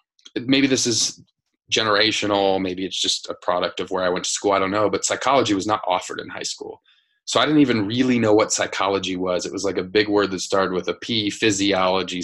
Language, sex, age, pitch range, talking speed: English, male, 20-39, 95-120 Hz, 230 wpm